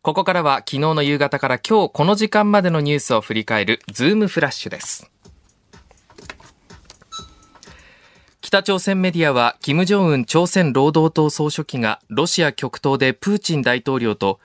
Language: Japanese